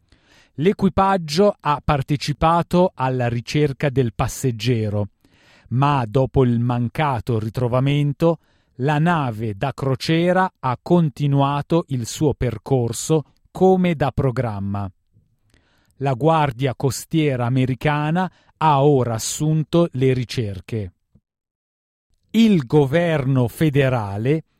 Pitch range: 120-160 Hz